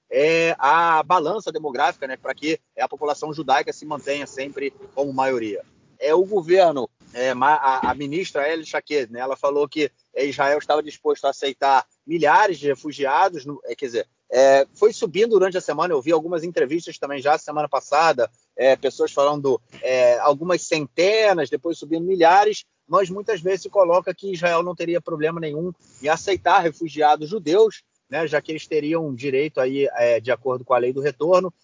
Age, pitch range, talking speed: 30-49, 145-180 Hz, 175 wpm